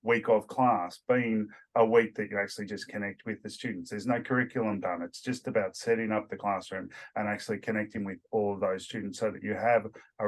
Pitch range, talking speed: 105-130 Hz, 220 wpm